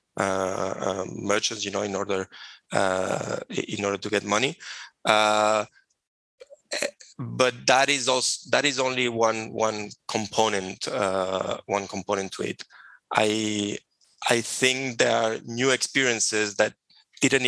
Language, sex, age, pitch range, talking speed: English, male, 20-39, 105-120 Hz, 130 wpm